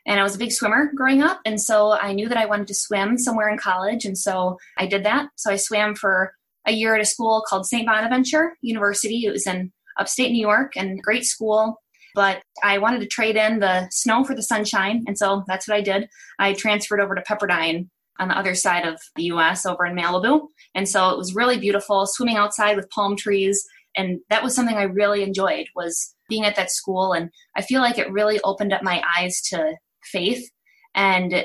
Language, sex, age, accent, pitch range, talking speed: English, female, 20-39, American, 180-220 Hz, 220 wpm